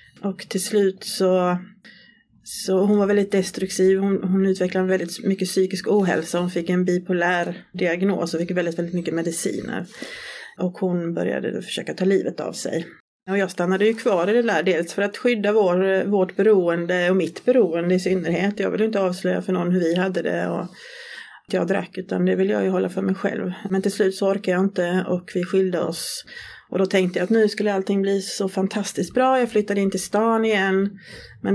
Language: Swedish